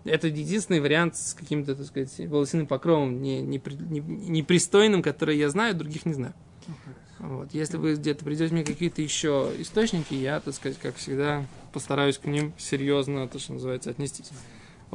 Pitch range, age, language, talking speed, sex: 140-185 Hz, 20-39, Russian, 165 wpm, male